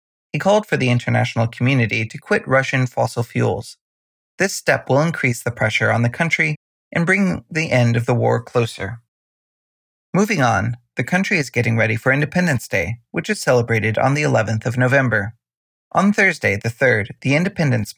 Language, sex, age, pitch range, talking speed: English, male, 30-49, 115-150 Hz, 175 wpm